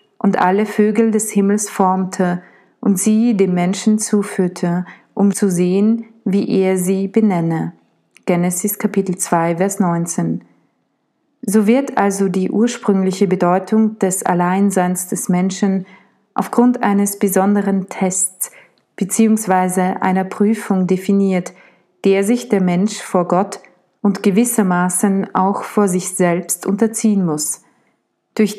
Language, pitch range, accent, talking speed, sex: German, 185-210 Hz, German, 120 wpm, female